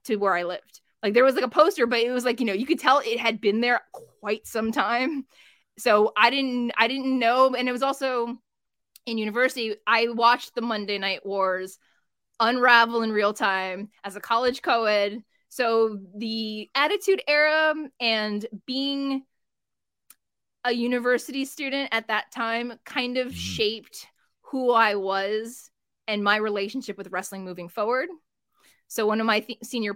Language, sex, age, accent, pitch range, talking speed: English, female, 20-39, American, 200-255 Hz, 165 wpm